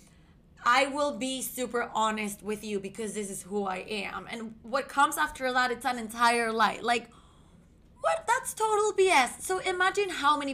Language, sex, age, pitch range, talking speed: English, female, 20-39, 215-270 Hz, 175 wpm